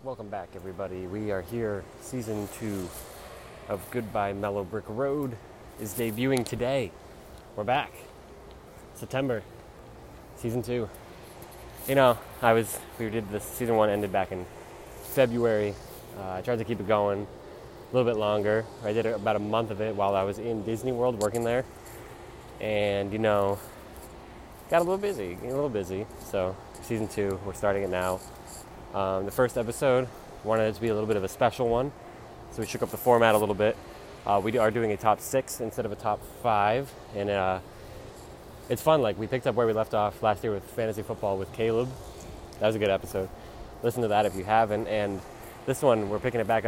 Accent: American